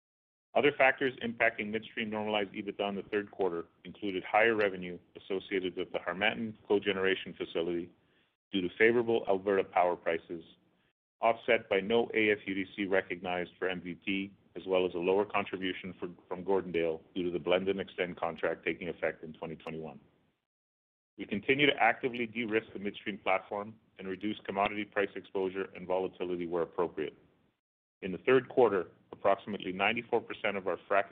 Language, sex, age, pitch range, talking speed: English, male, 40-59, 90-110 Hz, 150 wpm